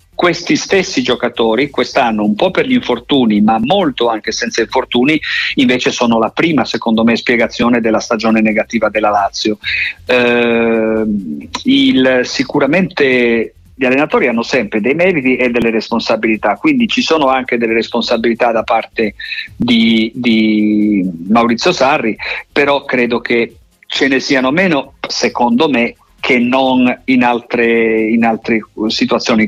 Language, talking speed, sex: Italian, 130 wpm, male